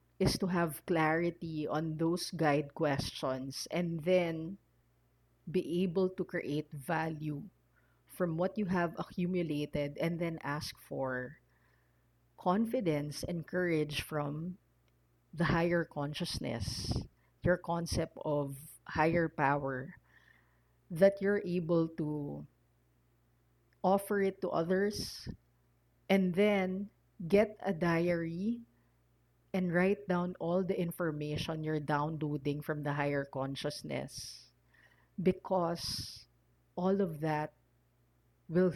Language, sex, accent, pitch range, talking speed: English, female, Filipino, 135-175 Hz, 100 wpm